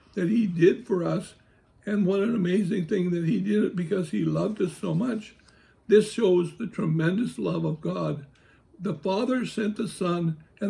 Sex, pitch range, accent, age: male, 160-200 Hz, American, 60-79